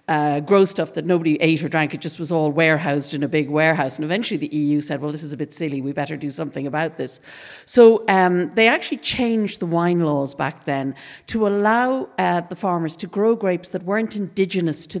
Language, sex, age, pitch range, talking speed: English, female, 50-69, 150-185 Hz, 225 wpm